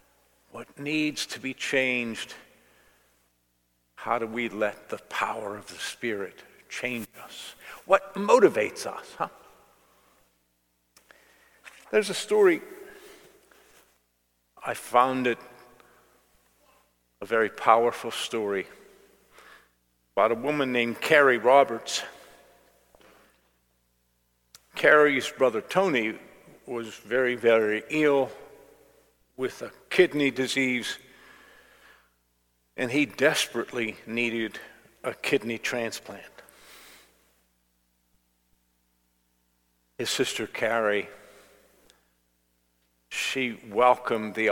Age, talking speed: 50-69, 80 wpm